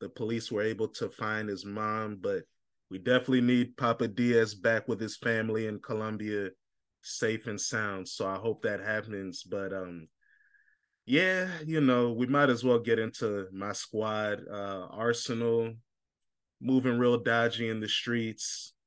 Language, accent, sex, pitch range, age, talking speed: English, American, male, 110-125 Hz, 20-39, 155 wpm